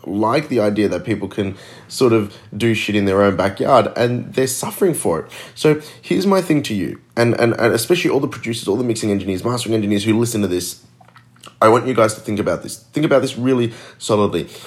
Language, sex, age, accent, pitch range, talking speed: English, male, 20-39, Australian, 105-130 Hz, 225 wpm